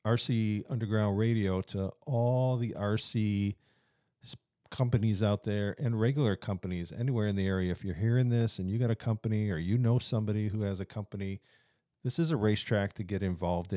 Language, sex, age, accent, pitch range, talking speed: English, male, 50-69, American, 95-120 Hz, 180 wpm